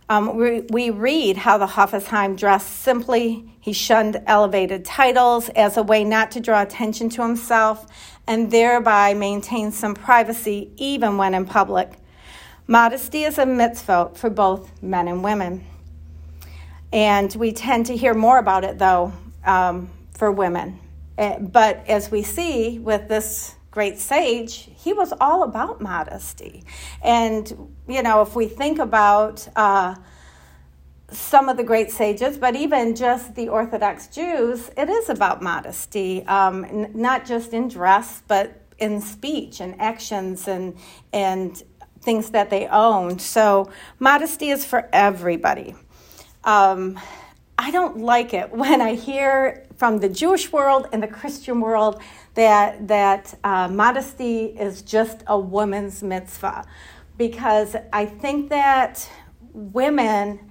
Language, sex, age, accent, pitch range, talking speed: English, female, 40-59, American, 200-240 Hz, 140 wpm